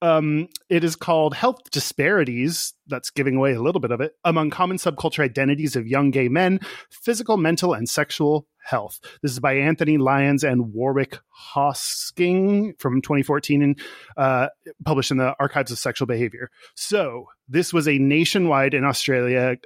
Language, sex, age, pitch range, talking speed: English, male, 30-49, 130-160 Hz, 160 wpm